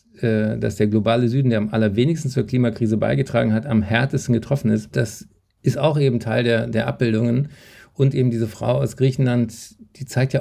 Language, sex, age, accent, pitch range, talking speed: German, male, 50-69, German, 115-135 Hz, 185 wpm